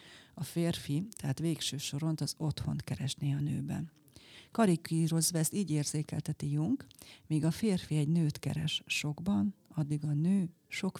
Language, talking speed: Hungarian, 135 wpm